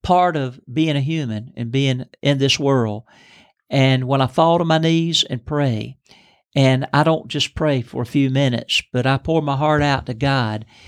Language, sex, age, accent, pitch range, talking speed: English, male, 50-69, American, 125-150 Hz, 200 wpm